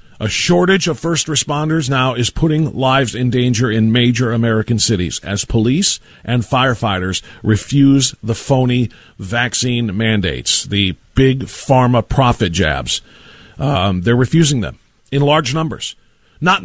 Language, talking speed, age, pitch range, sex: English, 135 wpm, 40-59, 120-180 Hz, male